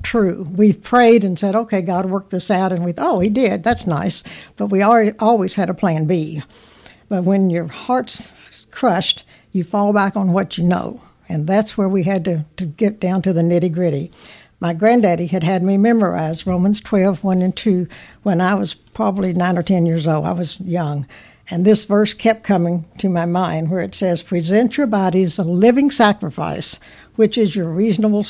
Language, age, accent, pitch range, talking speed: English, 60-79, American, 175-205 Hz, 200 wpm